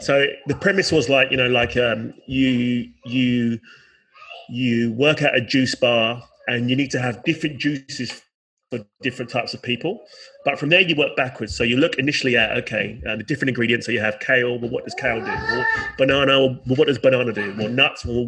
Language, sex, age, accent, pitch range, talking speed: English, male, 30-49, British, 120-140 Hz, 205 wpm